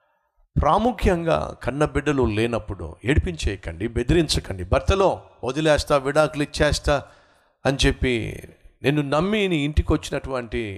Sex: male